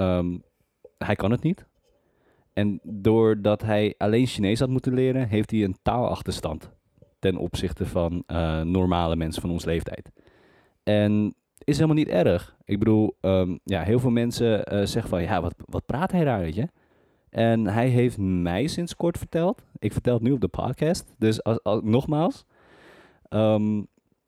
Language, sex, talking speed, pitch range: Dutch, male, 170 wpm, 100-140 Hz